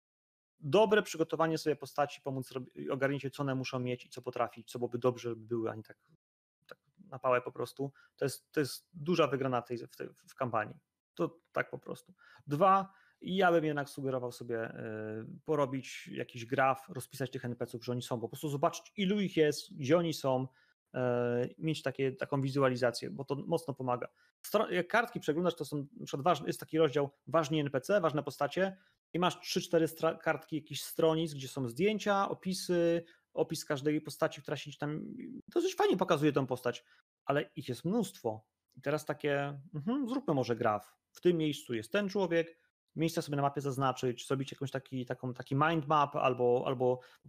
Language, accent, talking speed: Polish, native, 175 wpm